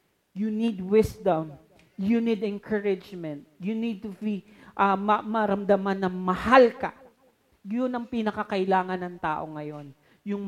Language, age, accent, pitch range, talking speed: Filipino, 40-59, native, 200-315 Hz, 125 wpm